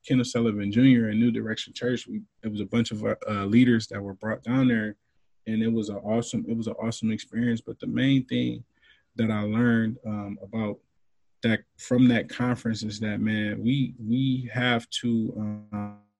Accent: American